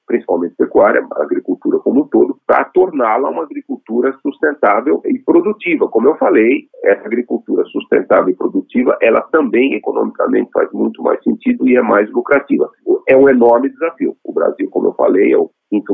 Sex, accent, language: male, Brazilian, Portuguese